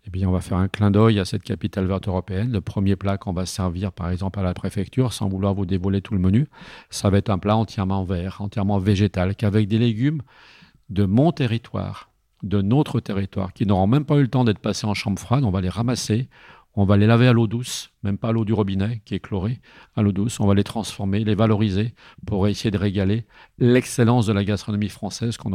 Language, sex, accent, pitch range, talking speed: French, male, French, 100-115 Hz, 235 wpm